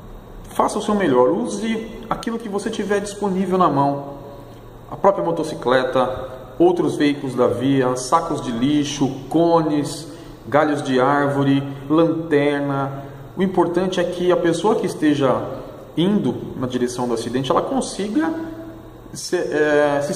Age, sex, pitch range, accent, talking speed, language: 40-59, male, 125-170 Hz, Brazilian, 130 wpm, Portuguese